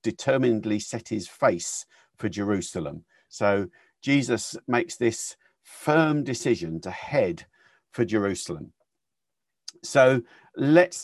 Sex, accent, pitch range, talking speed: male, British, 105-140 Hz, 100 wpm